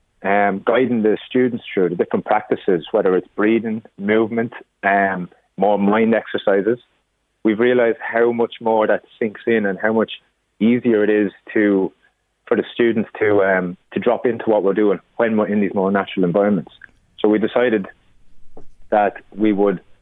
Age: 30-49